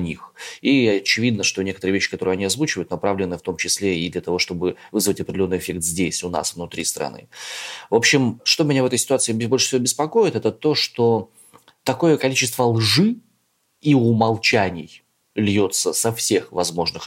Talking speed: 160 wpm